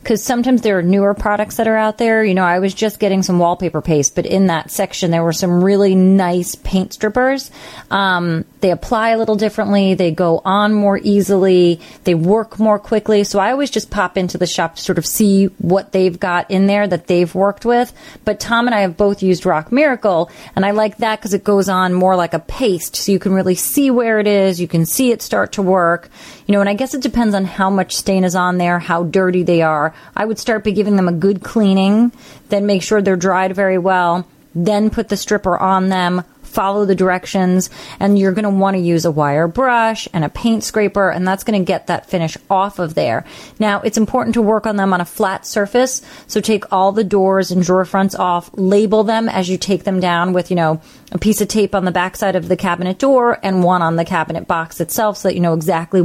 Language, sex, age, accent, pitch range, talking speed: English, female, 30-49, American, 180-210 Hz, 240 wpm